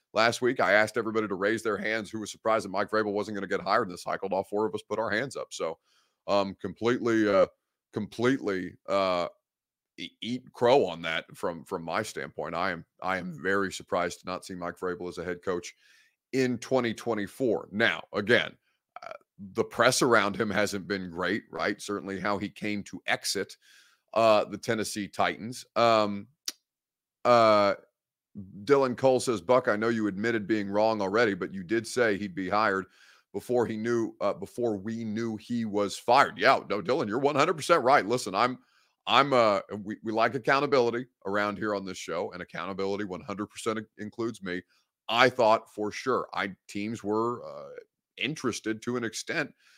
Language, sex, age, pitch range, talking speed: English, male, 30-49, 100-120 Hz, 180 wpm